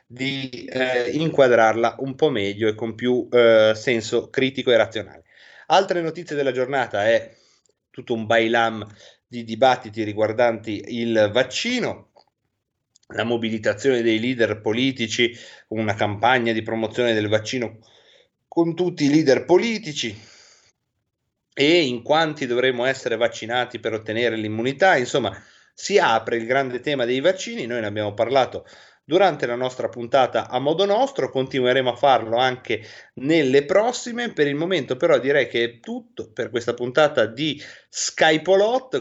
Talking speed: 140 wpm